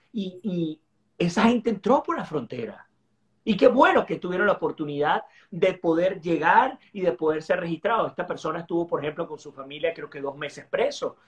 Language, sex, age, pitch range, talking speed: Spanish, male, 40-59, 150-210 Hz, 190 wpm